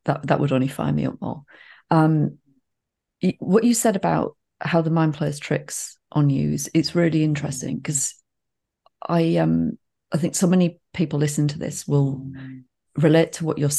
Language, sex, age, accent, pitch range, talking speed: English, female, 30-49, British, 140-160 Hz, 170 wpm